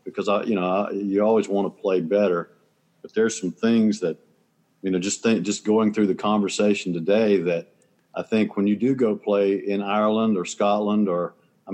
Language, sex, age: English, male, 50-69